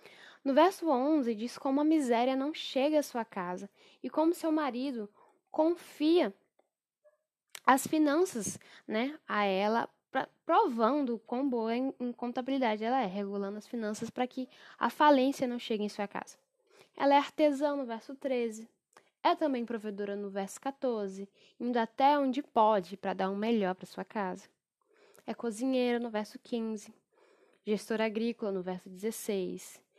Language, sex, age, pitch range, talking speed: Portuguese, female, 10-29, 215-290 Hz, 155 wpm